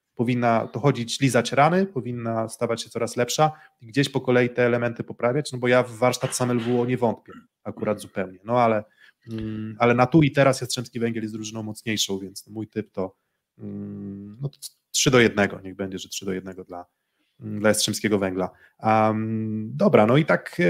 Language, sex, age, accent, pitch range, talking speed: Polish, male, 20-39, native, 110-130 Hz, 185 wpm